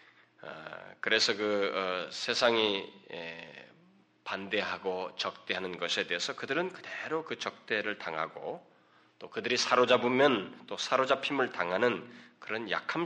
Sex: male